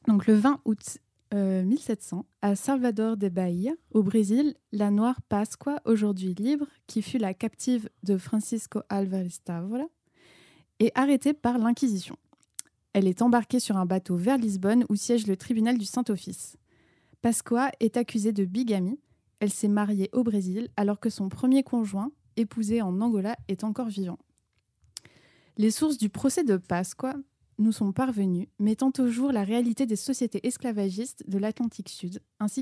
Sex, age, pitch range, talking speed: female, 20-39, 200-245 Hz, 155 wpm